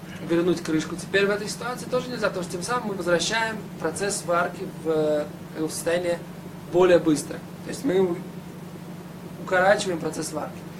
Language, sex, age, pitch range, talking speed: Russian, male, 20-39, 165-185 Hz, 145 wpm